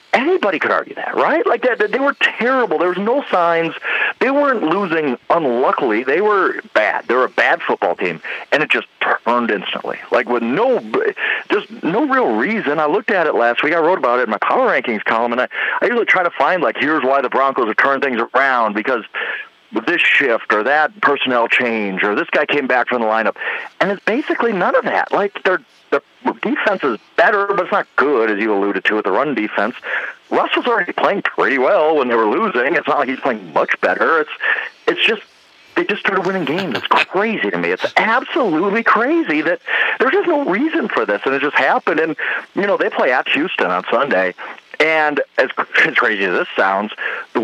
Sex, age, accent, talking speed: male, 40-59, American, 215 wpm